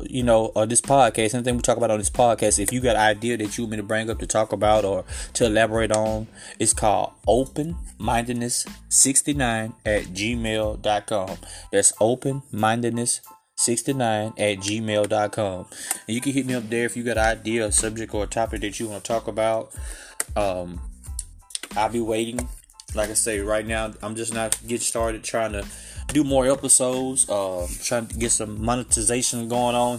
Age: 20-39